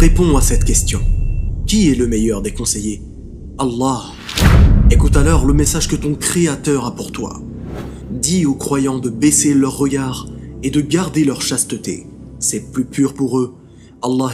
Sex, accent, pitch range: male, French, 125-150 Hz